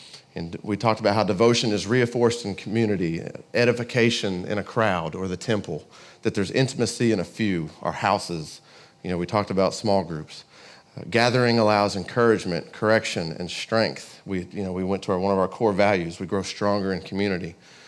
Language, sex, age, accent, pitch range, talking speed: English, male, 40-59, American, 95-115 Hz, 190 wpm